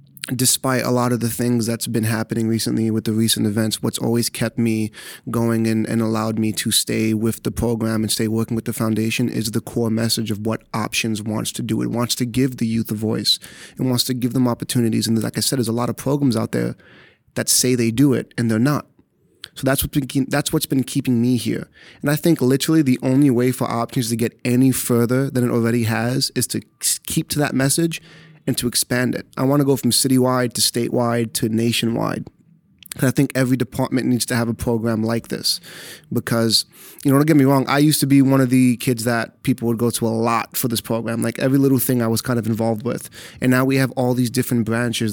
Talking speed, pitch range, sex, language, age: 235 wpm, 115-130 Hz, male, English, 30-49